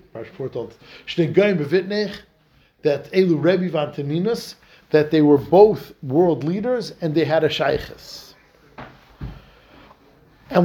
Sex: male